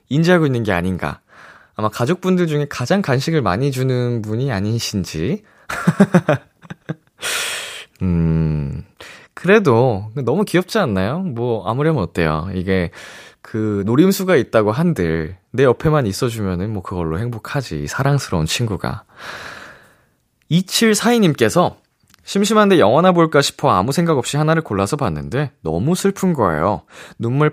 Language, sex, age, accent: Korean, male, 20-39, native